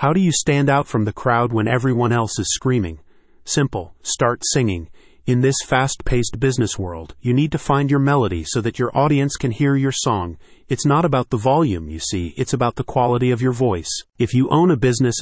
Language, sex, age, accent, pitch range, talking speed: English, male, 40-59, American, 105-140 Hz, 215 wpm